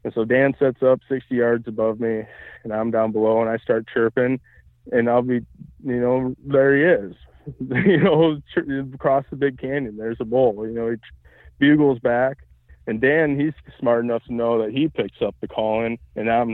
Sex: male